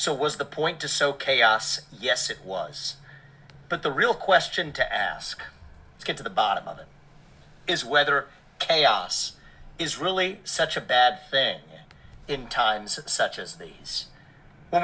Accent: American